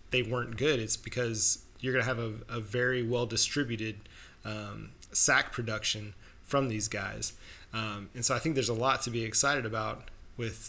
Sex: male